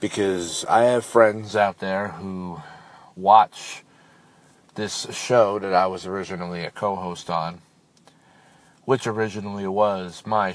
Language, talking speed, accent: English, 120 wpm, American